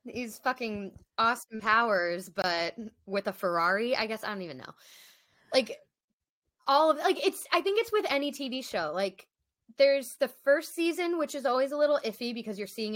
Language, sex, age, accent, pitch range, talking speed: English, female, 20-39, American, 195-275 Hz, 190 wpm